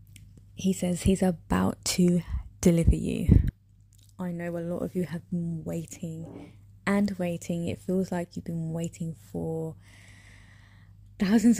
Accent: British